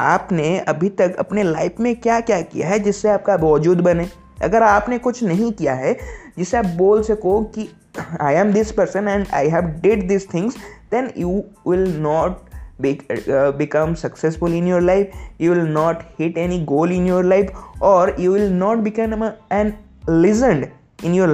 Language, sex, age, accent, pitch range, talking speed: Hindi, male, 20-39, native, 165-215 Hz, 175 wpm